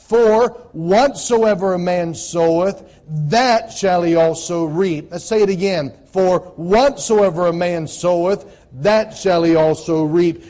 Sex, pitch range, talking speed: male, 175-220 Hz, 135 wpm